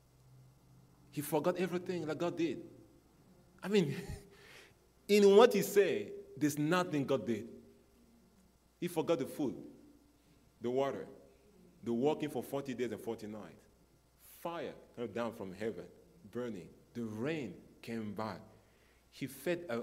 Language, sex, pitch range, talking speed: English, male, 110-145 Hz, 130 wpm